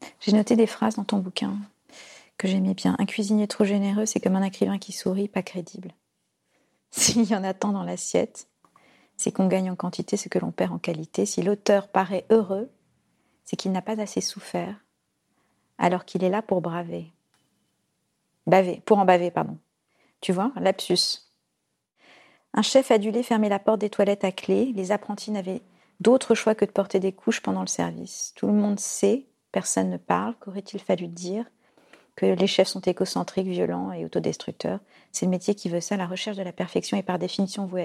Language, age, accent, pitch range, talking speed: French, 40-59, French, 185-215 Hz, 190 wpm